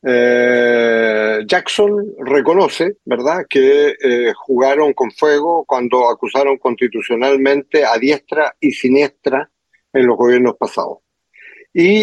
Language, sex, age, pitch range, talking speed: Spanish, male, 50-69, 135-205 Hz, 105 wpm